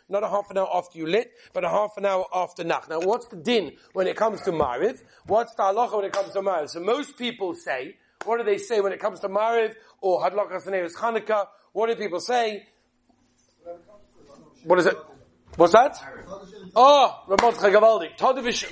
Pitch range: 200-255 Hz